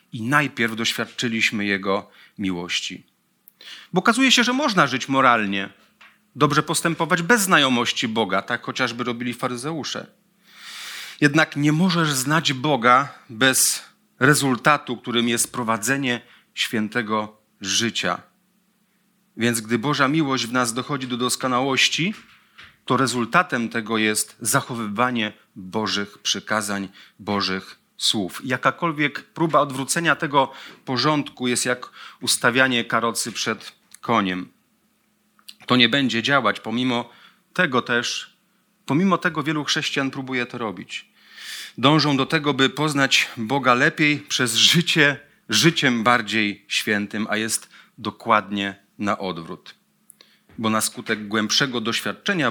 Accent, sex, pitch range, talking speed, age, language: native, male, 110-150 Hz, 110 wpm, 40-59, Polish